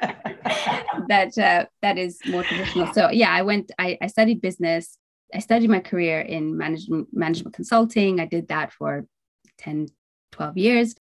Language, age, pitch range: English, 20-39, 160-200 Hz